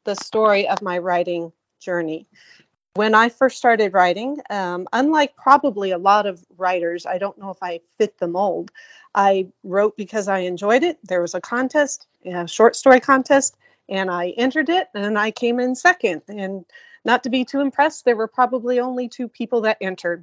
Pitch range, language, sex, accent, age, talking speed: 195-260 Hz, English, female, American, 40-59, 190 wpm